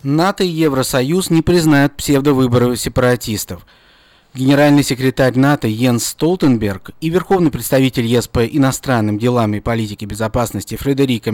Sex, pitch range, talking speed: male, 115-155 Hz, 120 wpm